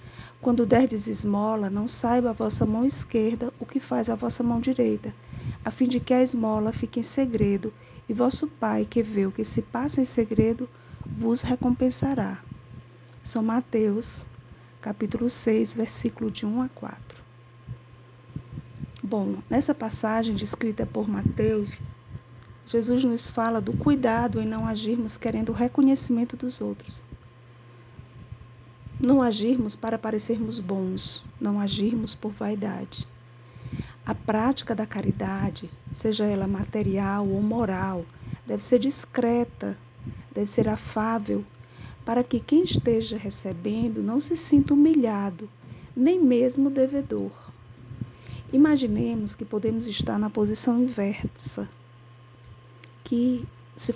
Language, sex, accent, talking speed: Portuguese, female, Brazilian, 125 wpm